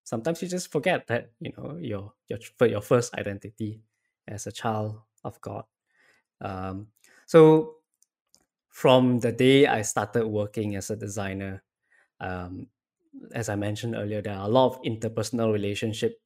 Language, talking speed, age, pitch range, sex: English, 150 wpm, 10-29, 100-125 Hz, male